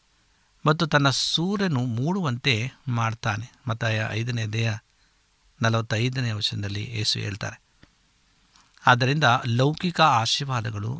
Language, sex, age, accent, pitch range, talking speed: Kannada, male, 60-79, native, 115-140 Hz, 80 wpm